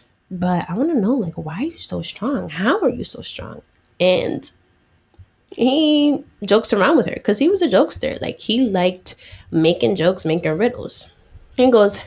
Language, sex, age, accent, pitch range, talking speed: English, female, 10-29, American, 160-215 Hz, 180 wpm